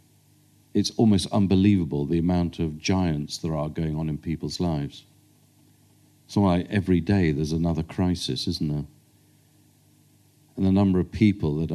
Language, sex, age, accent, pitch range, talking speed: English, male, 50-69, British, 90-125 Hz, 155 wpm